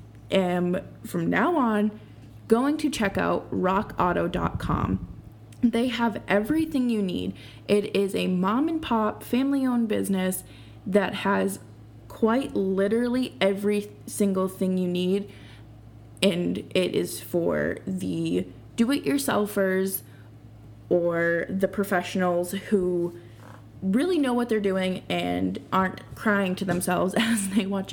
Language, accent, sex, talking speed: English, American, female, 115 wpm